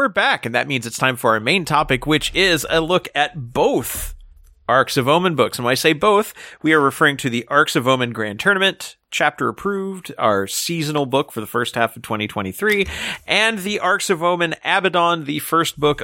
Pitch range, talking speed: 110-150 Hz, 210 wpm